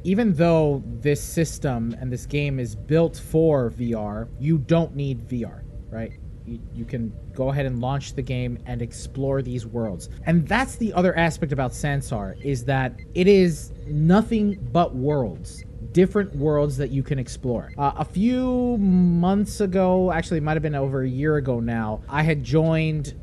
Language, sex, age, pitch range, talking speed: English, male, 30-49, 125-170 Hz, 175 wpm